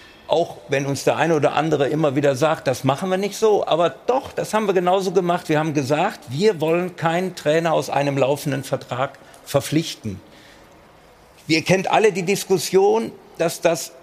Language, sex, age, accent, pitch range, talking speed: German, male, 50-69, German, 140-175 Hz, 175 wpm